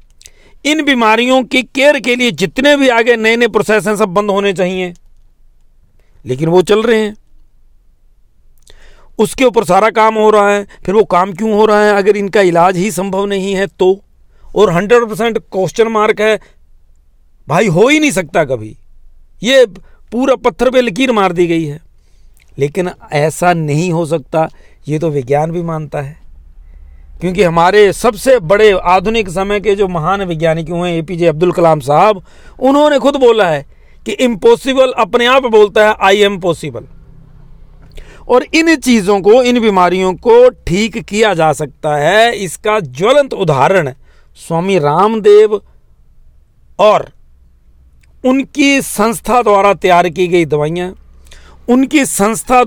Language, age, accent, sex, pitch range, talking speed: Hindi, 50-69, native, male, 165-230 Hz, 150 wpm